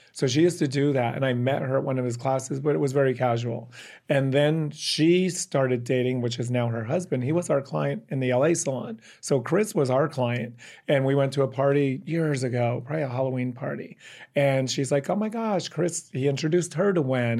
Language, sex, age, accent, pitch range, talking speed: English, male, 40-59, American, 130-150 Hz, 230 wpm